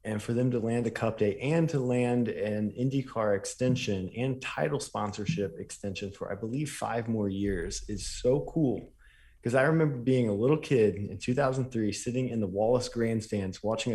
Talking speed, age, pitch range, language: 180 wpm, 20-39, 100-130 Hz, English